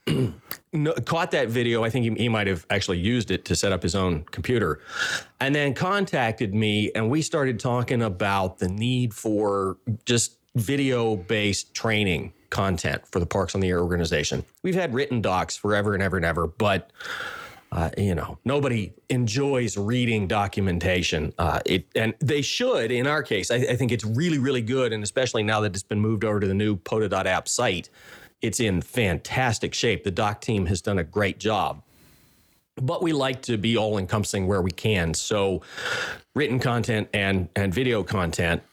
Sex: male